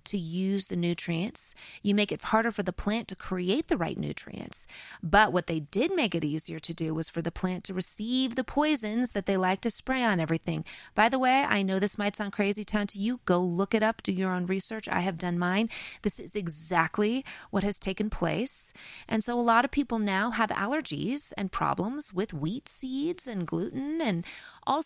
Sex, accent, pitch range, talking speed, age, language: female, American, 180-225 Hz, 215 wpm, 30-49, English